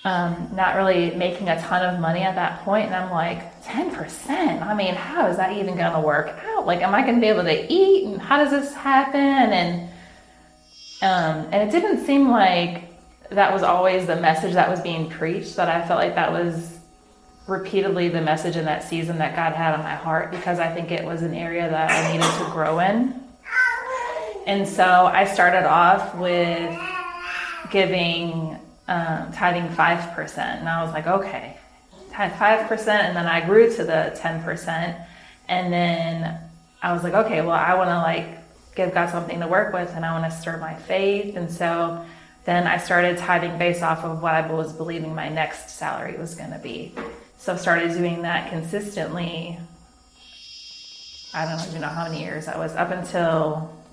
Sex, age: female, 30-49